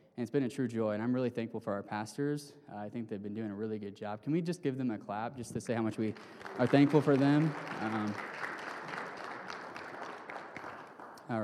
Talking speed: 220 wpm